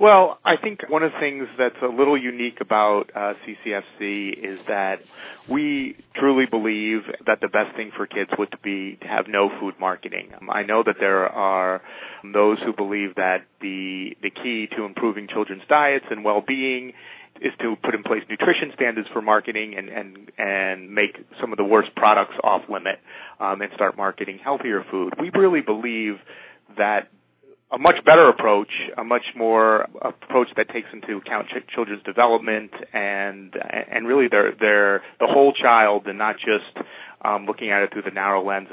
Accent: American